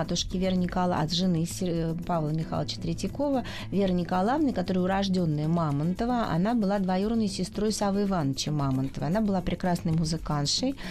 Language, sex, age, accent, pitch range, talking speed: Russian, female, 30-49, native, 165-205 Hz, 130 wpm